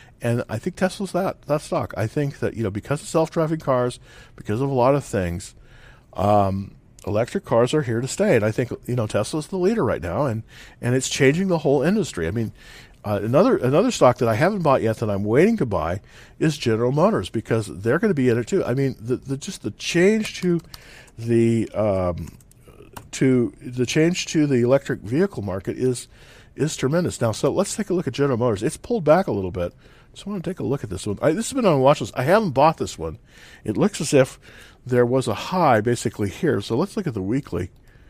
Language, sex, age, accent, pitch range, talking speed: English, male, 50-69, American, 110-155 Hz, 235 wpm